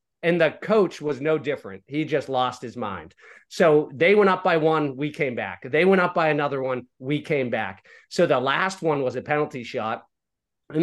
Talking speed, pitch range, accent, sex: 210 wpm, 125-160 Hz, American, male